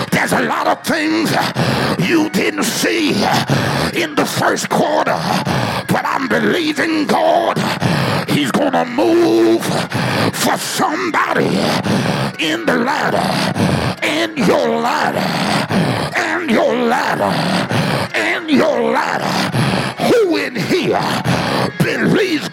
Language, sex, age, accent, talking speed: English, male, 60-79, American, 105 wpm